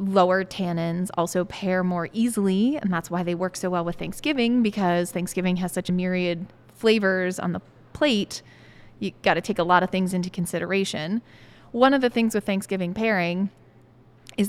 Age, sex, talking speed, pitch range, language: 20-39, female, 180 wpm, 175-220 Hz, English